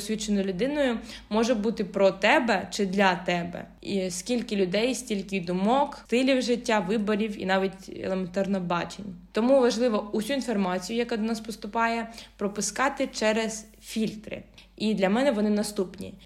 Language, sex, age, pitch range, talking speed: Ukrainian, female, 20-39, 195-235 Hz, 135 wpm